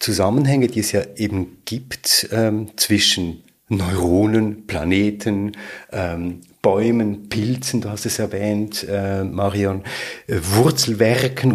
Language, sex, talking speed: German, male, 110 wpm